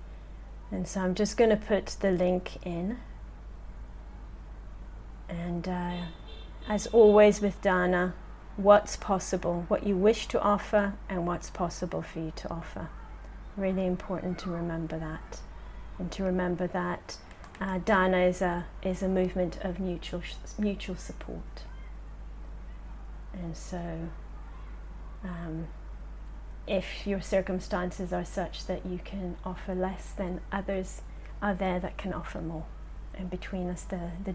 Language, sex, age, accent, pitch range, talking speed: English, female, 30-49, British, 170-195 Hz, 130 wpm